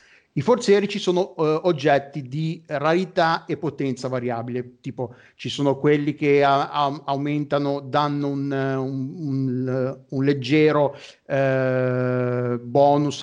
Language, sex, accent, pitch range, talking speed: Italian, male, native, 130-160 Hz, 95 wpm